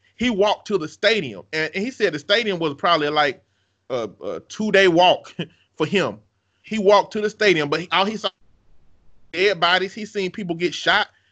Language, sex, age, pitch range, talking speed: English, male, 30-49, 130-195 Hz, 195 wpm